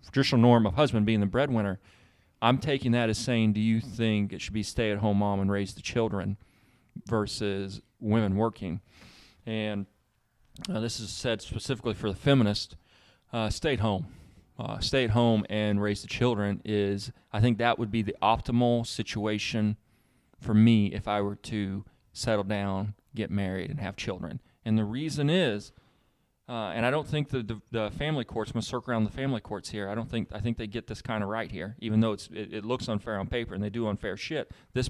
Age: 30-49